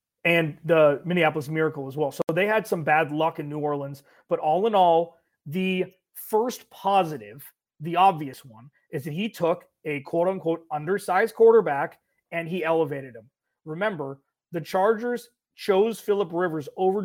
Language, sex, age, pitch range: English, male, 30-49, 155-205 Hz